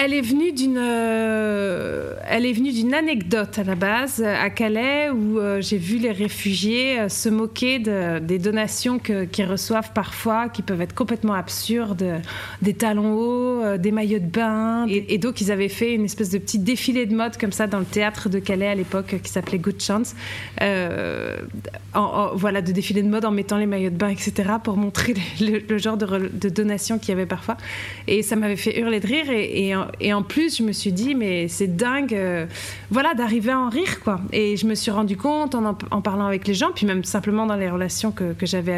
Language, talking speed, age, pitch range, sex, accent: French, 230 wpm, 30-49, 195-225 Hz, female, French